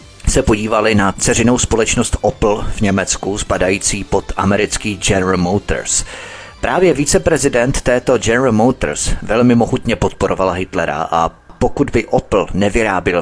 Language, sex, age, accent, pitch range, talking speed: Czech, male, 30-49, native, 95-125 Hz, 125 wpm